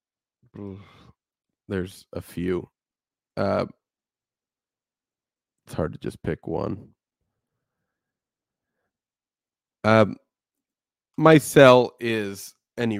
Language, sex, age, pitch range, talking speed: English, male, 20-39, 105-135 Hz, 70 wpm